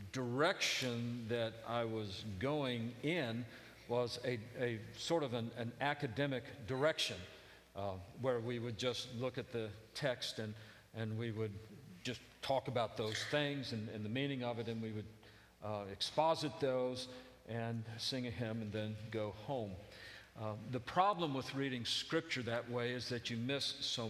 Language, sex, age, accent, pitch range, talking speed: English, male, 50-69, American, 105-125 Hz, 165 wpm